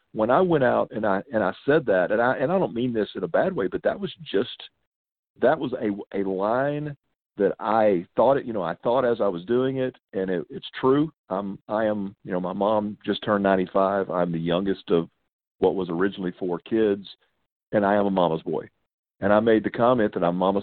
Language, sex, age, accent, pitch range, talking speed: English, male, 50-69, American, 95-125 Hz, 235 wpm